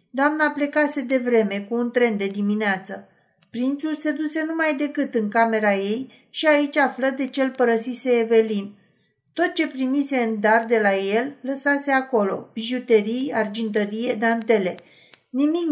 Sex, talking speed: female, 140 wpm